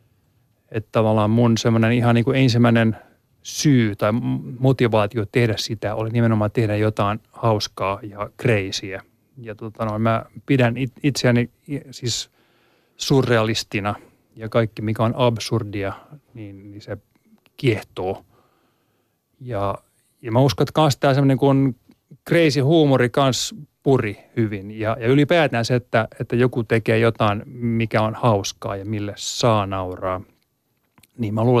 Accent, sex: native, male